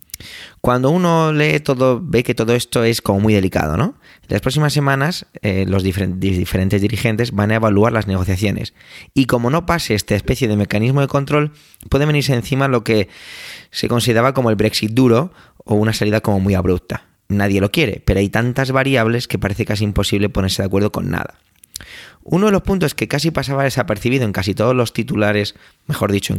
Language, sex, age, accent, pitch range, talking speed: Spanish, male, 20-39, Spanish, 100-130 Hz, 190 wpm